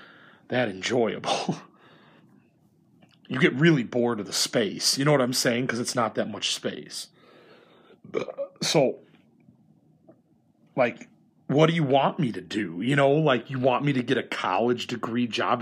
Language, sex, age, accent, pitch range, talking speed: English, male, 30-49, American, 115-155 Hz, 160 wpm